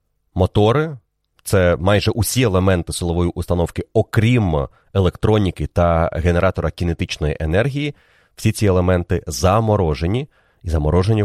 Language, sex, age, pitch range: Ukrainian, male, 30-49, 80-100 Hz